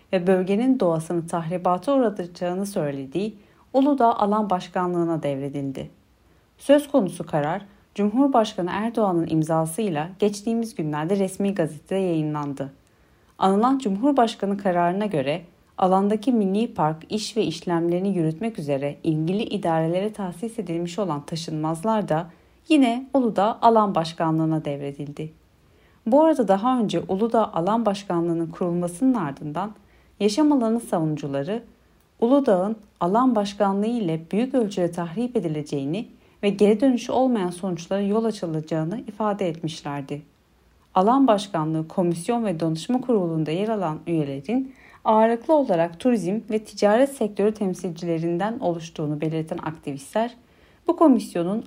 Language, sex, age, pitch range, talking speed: Turkish, female, 30-49, 160-225 Hz, 110 wpm